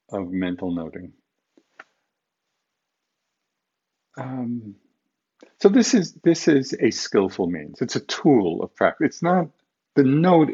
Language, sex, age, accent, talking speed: English, male, 50-69, American, 120 wpm